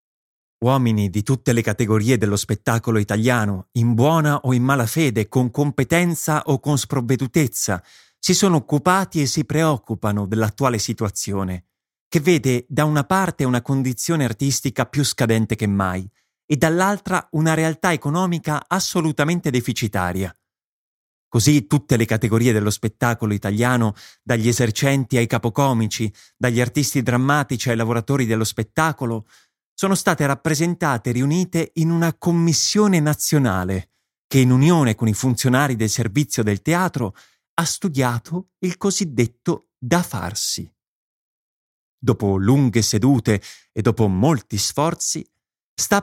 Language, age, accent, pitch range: Italian, 30-49, native, 115-160 Hz